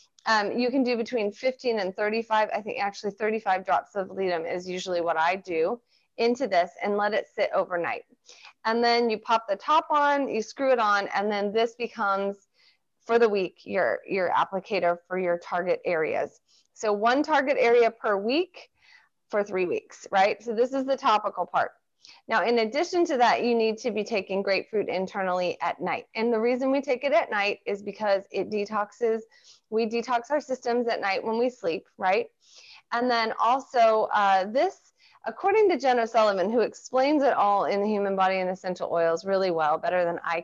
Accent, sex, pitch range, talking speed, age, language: American, female, 195-245 Hz, 190 wpm, 30-49, English